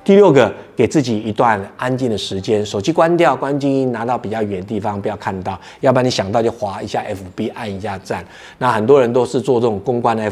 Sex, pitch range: male, 100-130 Hz